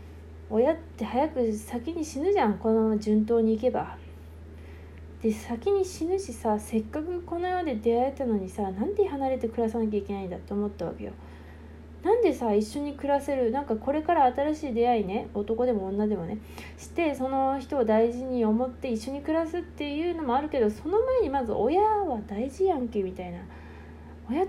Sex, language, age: female, Japanese, 20-39